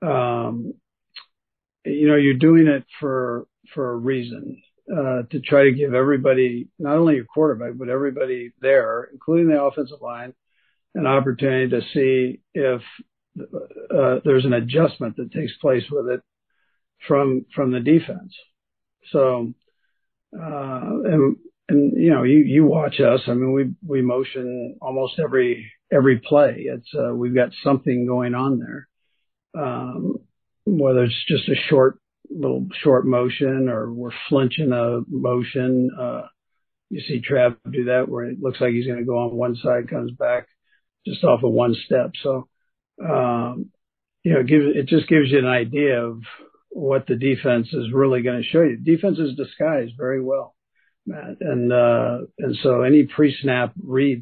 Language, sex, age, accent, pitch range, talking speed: English, male, 50-69, American, 125-150 Hz, 160 wpm